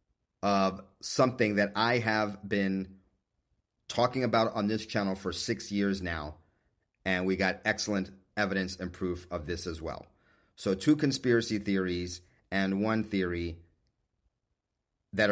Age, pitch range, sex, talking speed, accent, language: 40-59, 90-110 Hz, male, 135 wpm, American, English